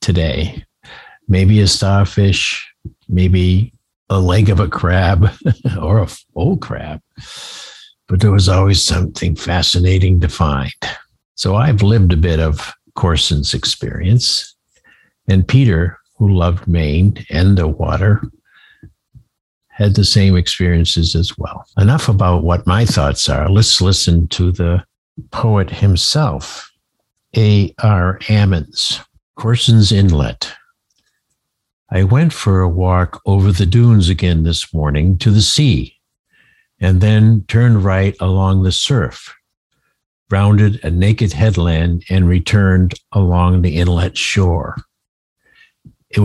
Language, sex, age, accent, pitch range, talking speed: English, male, 60-79, American, 90-105 Hz, 120 wpm